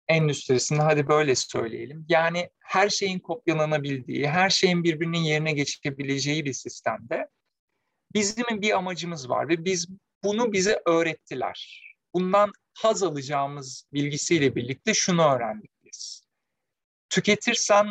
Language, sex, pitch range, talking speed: Turkish, male, 140-195 Hz, 105 wpm